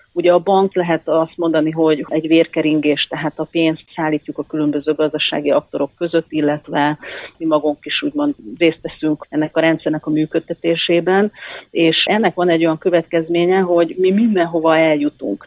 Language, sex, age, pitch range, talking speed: Hungarian, female, 40-59, 155-175 Hz, 155 wpm